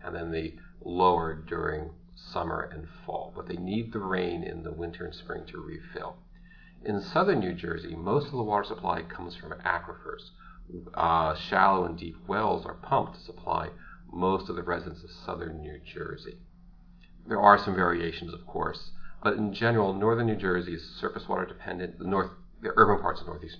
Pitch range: 85-120 Hz